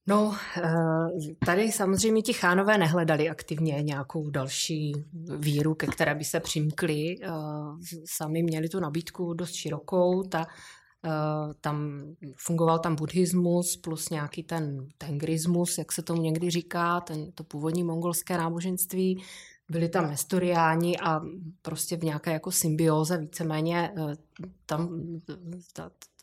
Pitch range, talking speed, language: 155-180 Hz, 110 wpm, Czech